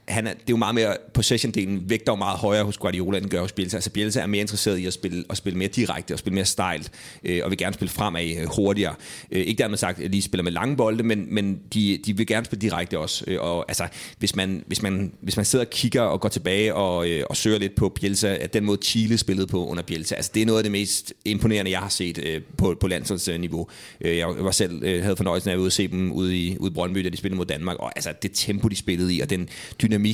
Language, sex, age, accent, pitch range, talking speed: Danish, male, 30-49, native, 95-110 Hz, 275 wpm